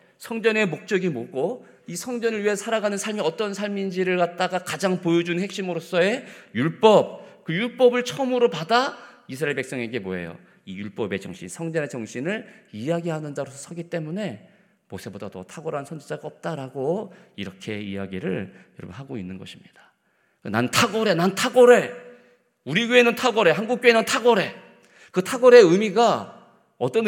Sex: male